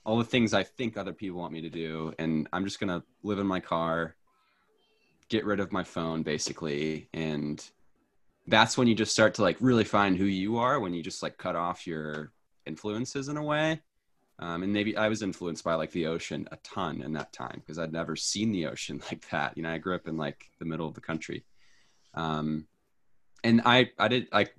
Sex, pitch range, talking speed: male, 80-105 Hz, 220 wpm